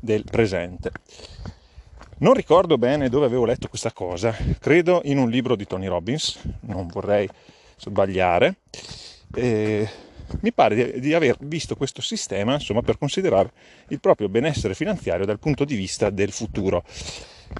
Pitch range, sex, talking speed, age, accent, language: 100-135 Hz, male, 140 wpm, 30-49, native, Italian